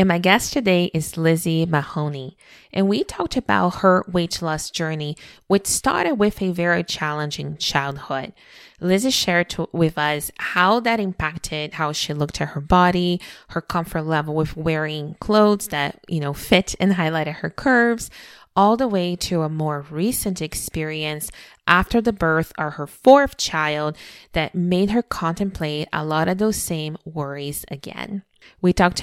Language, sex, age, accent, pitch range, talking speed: English, female, 20-39, American, 155-190 Hz, 160 wpm